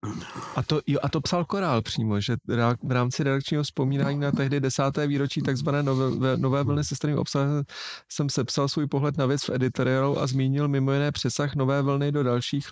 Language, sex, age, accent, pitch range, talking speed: Czech, male, 40-59, native, 125-140 Hz, 190 wpm